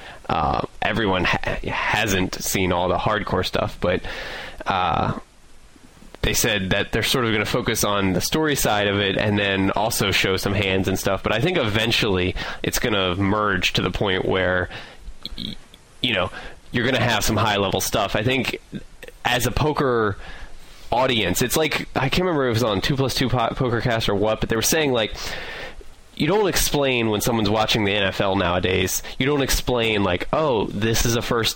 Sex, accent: male, American